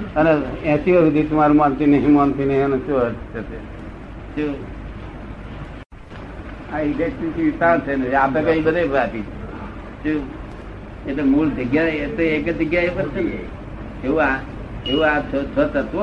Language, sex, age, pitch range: Gujarati, male, 60-79, 135-180 Hz